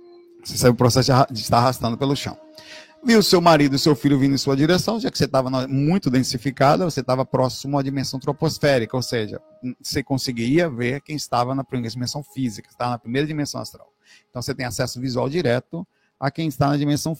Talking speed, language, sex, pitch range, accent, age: 200 wpm, Portuguese, male, 130-170 Hz, Brazilian, 50-69